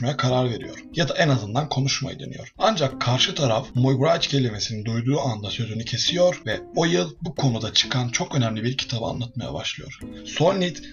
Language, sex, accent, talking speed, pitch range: Turkish, male, native, 165 wpm, 115-150 Hz